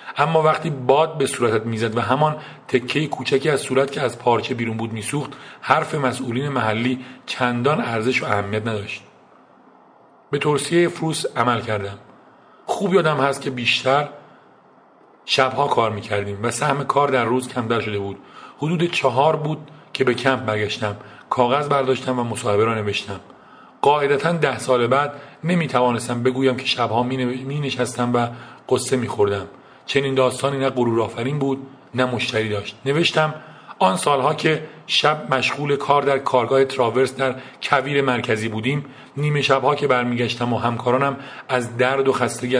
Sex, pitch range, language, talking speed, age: male, 120-140 Hz, Persian, 150 wpm, 40-59